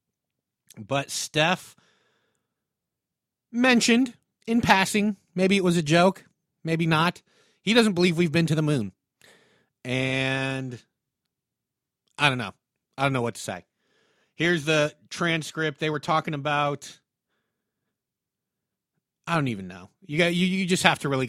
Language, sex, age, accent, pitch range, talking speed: English, male, 30-49, American, 130-165 Hz, 135 wpm